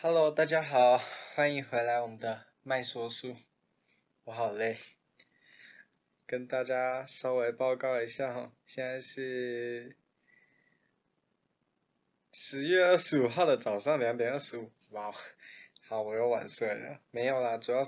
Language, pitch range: Chinese, 120-145 Hz